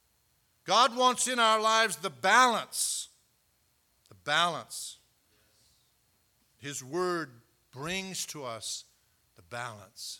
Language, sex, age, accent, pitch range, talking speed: English, male, 60-79, American, 140-225 Hz, 95 wpm